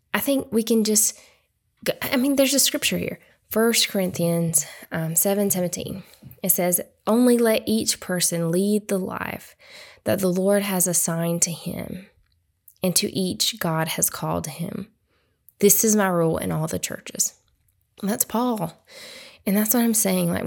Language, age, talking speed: English, 20-39, 165 wpm